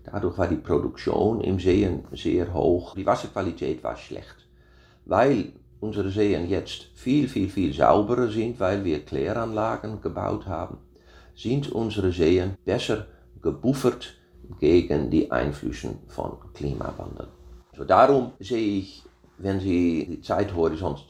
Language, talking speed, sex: German, 125 wpm, male